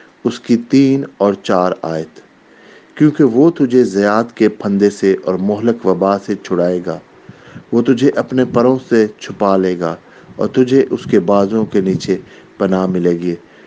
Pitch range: 105-120 Hz